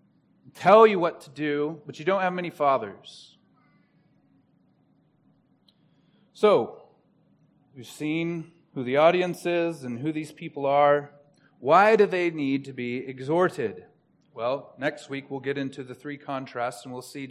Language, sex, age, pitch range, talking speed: English, male, 30-49, 140-180 Hz, 150 wpm